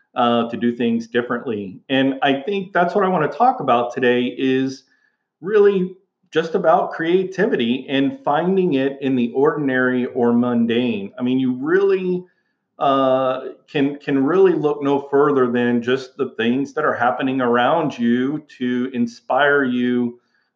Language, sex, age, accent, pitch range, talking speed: English, male, 40-59, American, 120-150 Hz, 155 wpm